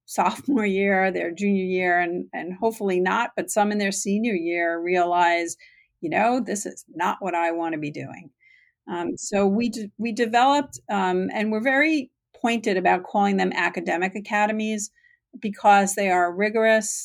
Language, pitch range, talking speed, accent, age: English, 185-225 Hz, 165 wpm, American, 50-69